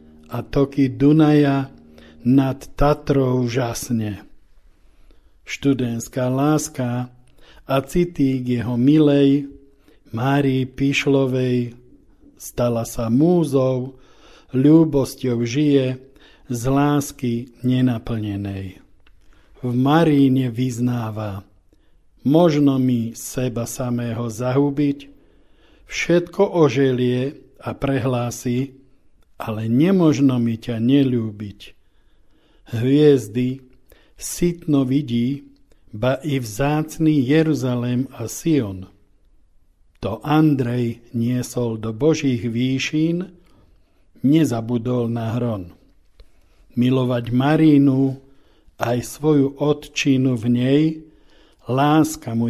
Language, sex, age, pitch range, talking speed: Slovak, male, 50-69, 120-140 Hz, 75 wpm